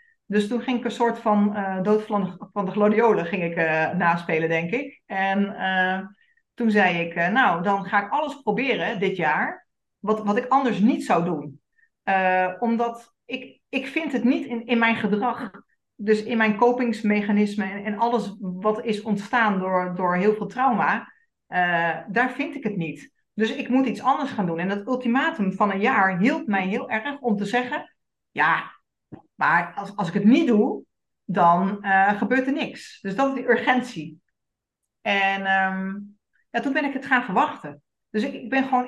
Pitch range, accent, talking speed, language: 195-250 Hz, Dutch, 185 wpm, Dutch